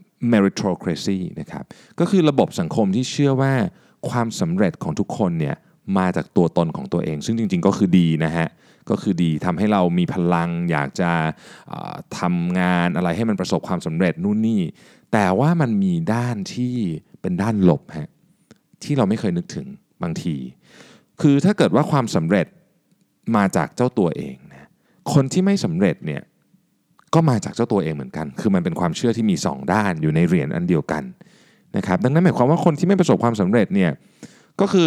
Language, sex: Thai, male